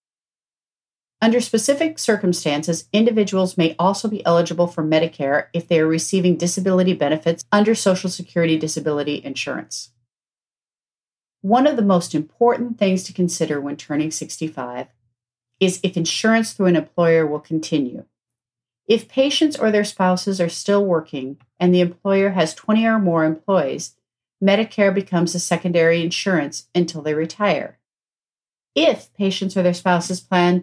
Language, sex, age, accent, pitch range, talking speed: English, female, 40-59, American, 160-195 Hz, 135 wpm